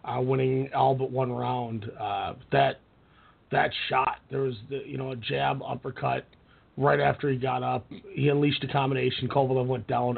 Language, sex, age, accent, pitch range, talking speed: English, male, 30-49, American, 135-170 Hz, 175 wpm